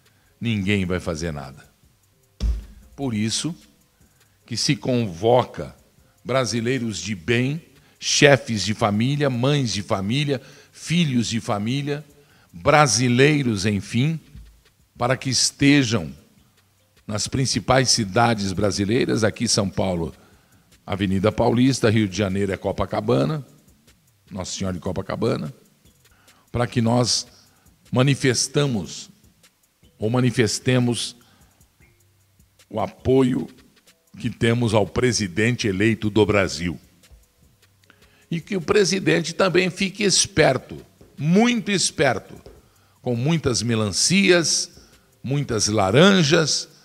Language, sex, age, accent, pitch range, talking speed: Portuguese, male, 50-69, Brazilian, 105-140 Hz, 95 wpm